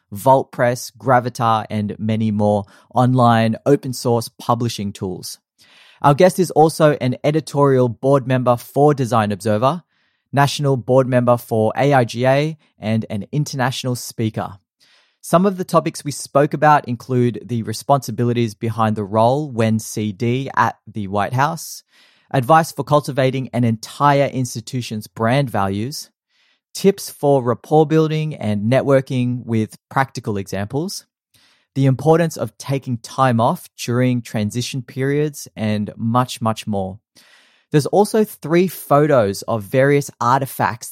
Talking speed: 125 wpm